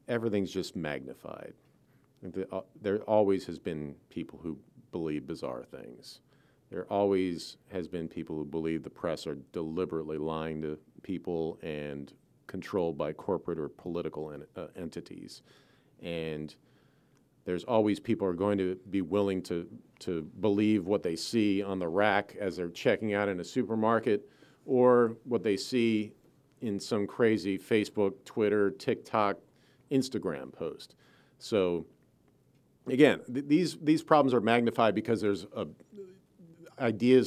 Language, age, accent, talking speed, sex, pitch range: English, 40-59, American, 135 wpm, male, 85-115 Hz